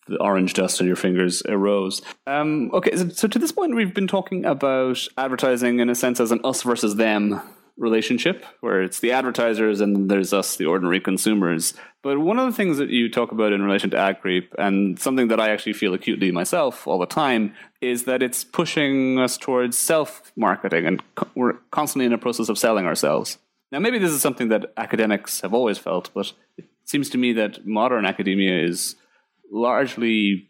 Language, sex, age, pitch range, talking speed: English, male, 30-49, 100-130 Hz, 195 wpm